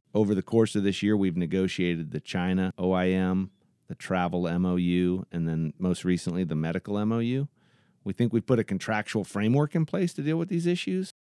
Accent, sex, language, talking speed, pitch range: American, male, English, 185 wpm, 80-100 Hz